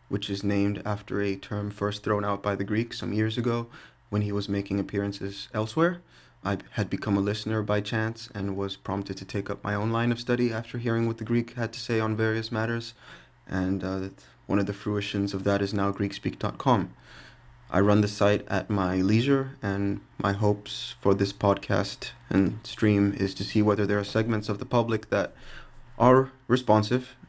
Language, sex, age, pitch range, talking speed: English, male, 20-39, 100-115 Hz, 195 wpm